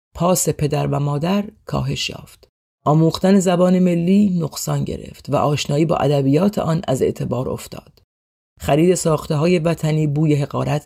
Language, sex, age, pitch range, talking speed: Persian, female, 40-59, 145-185 Hz, 140 wpm